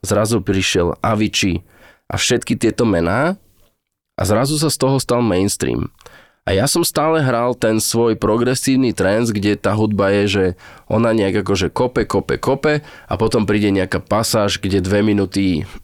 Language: Slovak